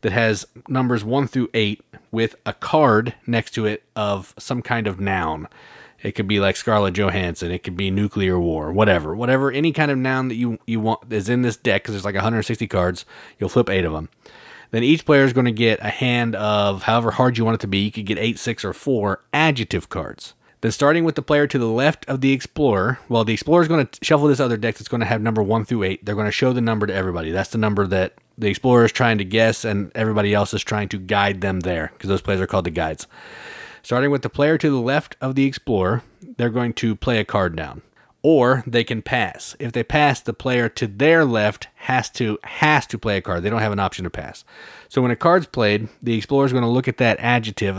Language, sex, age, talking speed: English, male, 30-49, 250 wpm